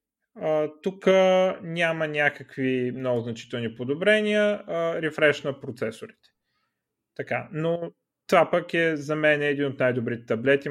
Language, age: Bulgarian, 30-49